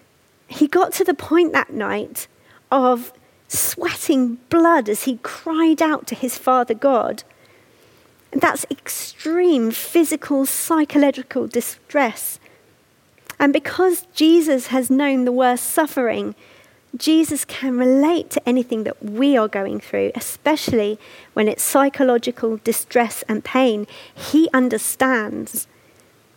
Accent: British